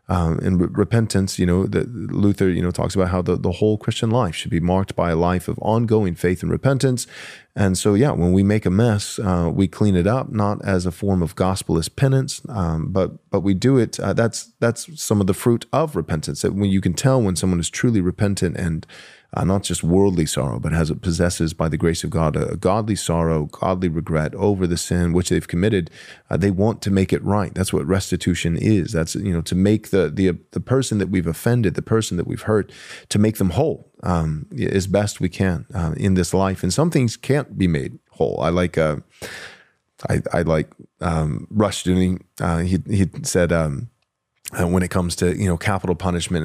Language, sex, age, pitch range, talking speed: English, male, 30-49, 85-105 Hz, 220 wpm